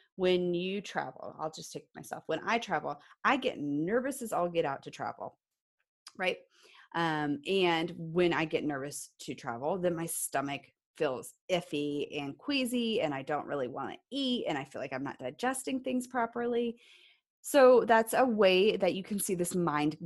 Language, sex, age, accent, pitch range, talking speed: English, female, 30-49, American, 160-230 Hz, 185 wpm